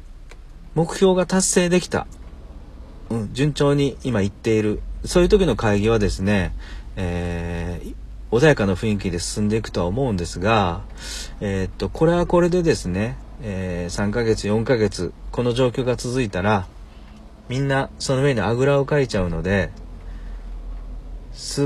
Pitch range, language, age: 90-130 Hz, Japanese, 40-59